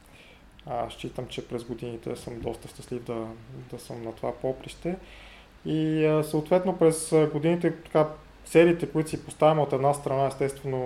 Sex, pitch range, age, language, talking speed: male, 125-145 Hz, 20-39, Bulgarian, 145 wpm